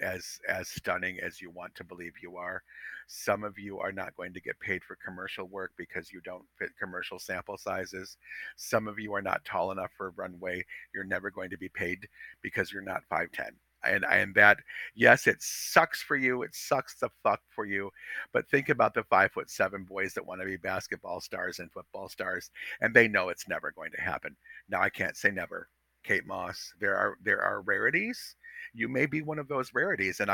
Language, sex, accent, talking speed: English, male, American, 215 wpm